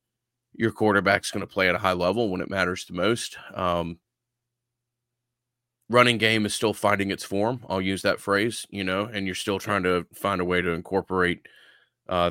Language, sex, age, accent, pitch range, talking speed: English, male, 30-49, American, 90-105 Hz, 190 wpm